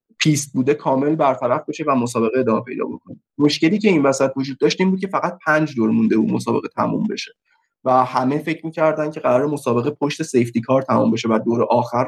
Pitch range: 130-175 Hz